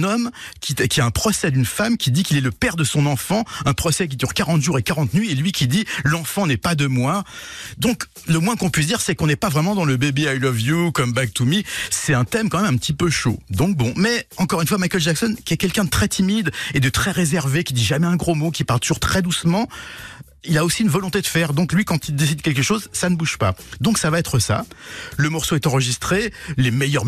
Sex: male